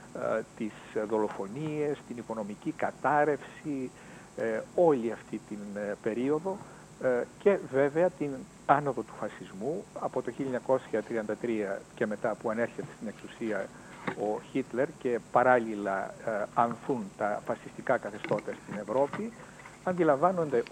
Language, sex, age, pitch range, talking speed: Greek, male, 60-79, 125-185 Hz, 100 wpm